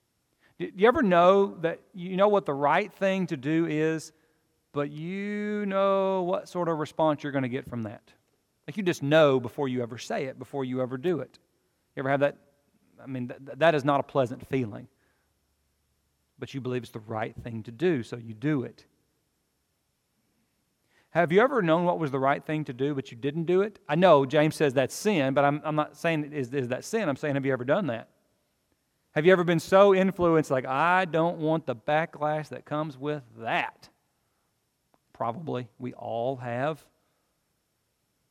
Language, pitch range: English, 130-170 Hz